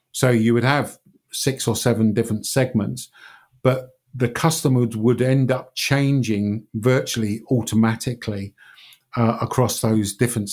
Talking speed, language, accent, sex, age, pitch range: 125 wpm, English, British, male, 50-69, 110-120 Hz